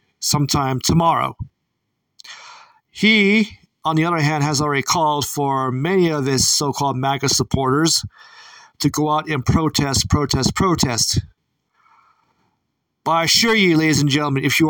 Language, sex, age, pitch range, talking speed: English, male, 40-59, 140-170 Hz, 135 wpm